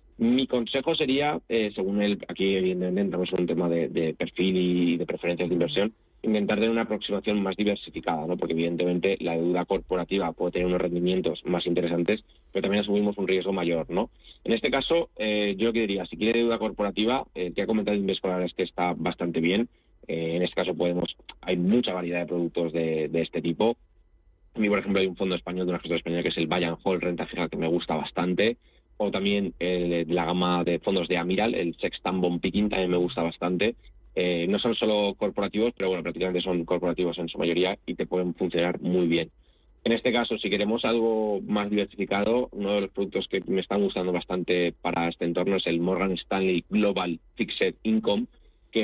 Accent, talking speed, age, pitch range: Spanish, 205 wpm, 20-39, 85-105 Hz